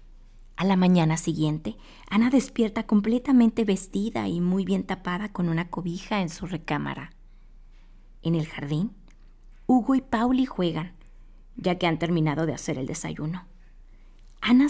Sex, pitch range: female, 155-200 Hz